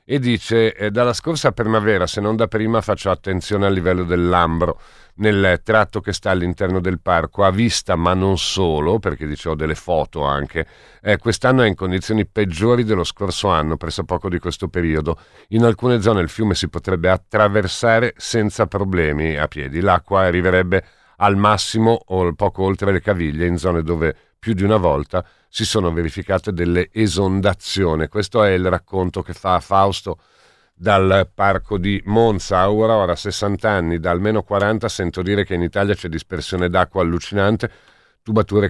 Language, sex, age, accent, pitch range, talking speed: Italian, male, 50-69, native, 85-105 Hz, 165 wpm